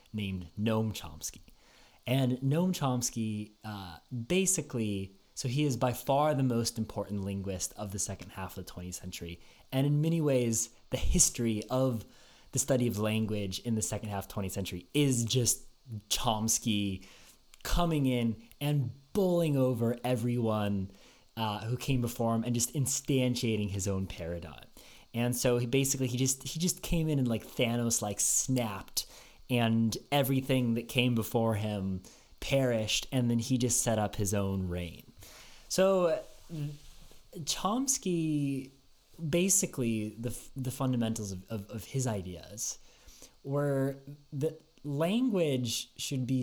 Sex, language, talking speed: male, English, 140 wpm